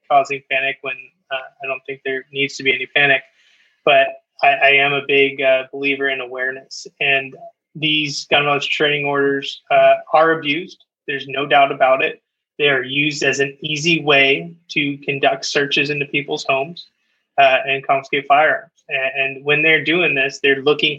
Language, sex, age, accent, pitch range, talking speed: English, male, 20-39, American, 135-165 Hz, 175 wpm